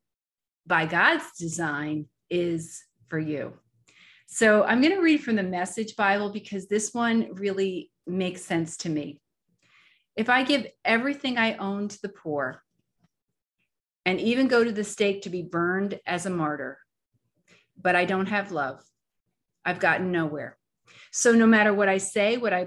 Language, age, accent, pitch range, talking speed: English, 30-49, American, 170-220 Hz, 160 wpm